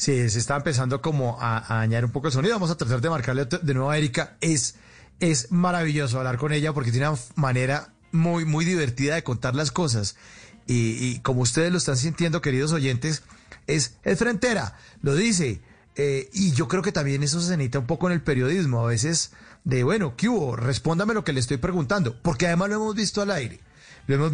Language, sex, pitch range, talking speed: Spanish, male, 125-175 Hz, 215 wpm